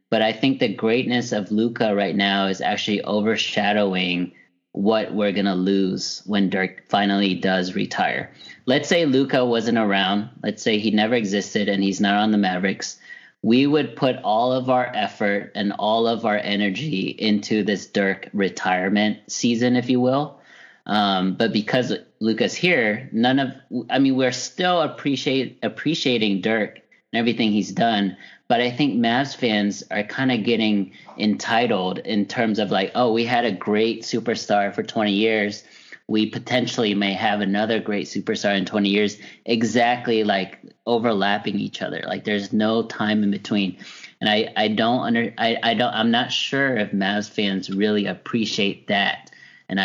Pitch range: 100-120 Hz